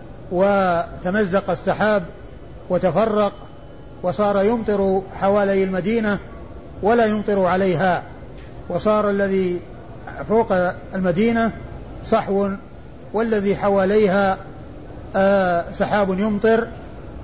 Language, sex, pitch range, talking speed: Arabic, male, 185-210 Hz, 70 wpm